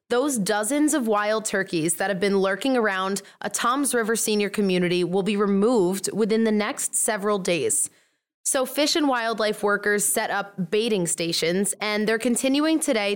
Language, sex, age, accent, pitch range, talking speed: English, female, 20-39, American, 195-250 Hz, 165 wpm